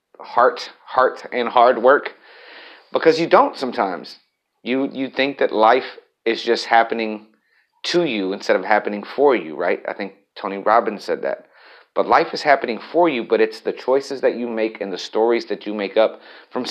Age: 30-49